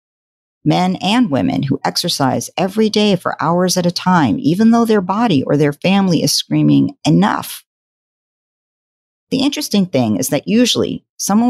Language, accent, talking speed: English, American, 150 wpm